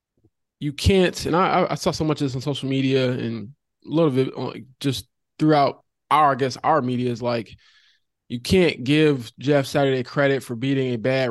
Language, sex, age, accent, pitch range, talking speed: English, male, 20-39, American, 125-145 Hz, 190 wpm